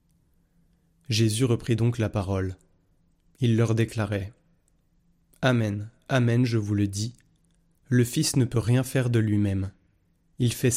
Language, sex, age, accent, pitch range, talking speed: French, male, 30-49, French, 105-125 Hz, 135 wpm